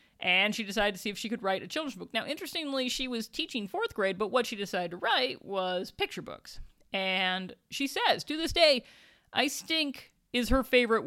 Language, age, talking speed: English, 40-59, 210 wpm